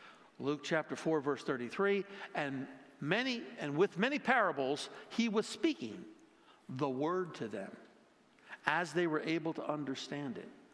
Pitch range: 130-180 Hz